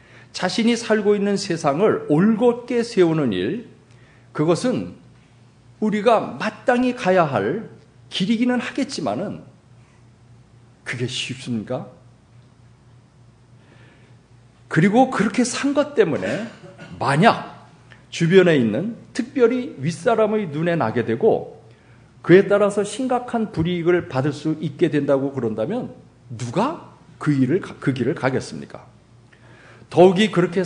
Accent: native